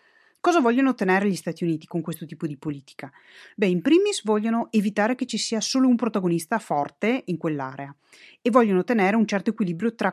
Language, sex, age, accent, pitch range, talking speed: Italian, female, 30-49, native, 165-220 Hz, 190 wpm